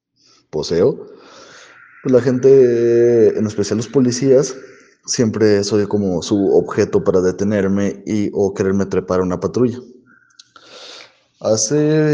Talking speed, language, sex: 115 wpm, Spanish, male